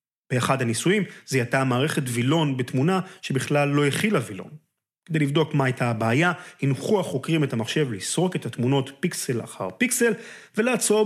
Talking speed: 140 wpm